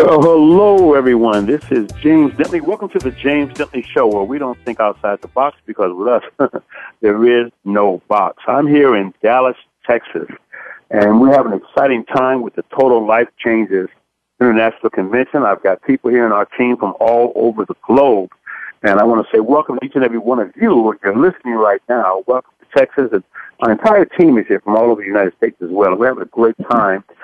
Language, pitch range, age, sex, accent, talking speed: English, 110-140 Hz, 60-79, male, American, 210 wpm